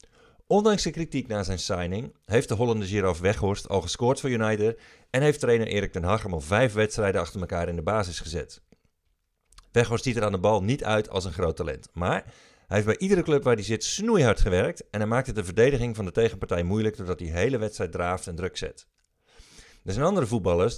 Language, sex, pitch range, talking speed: Dutch, male, 95-125 Hz, 220 wpm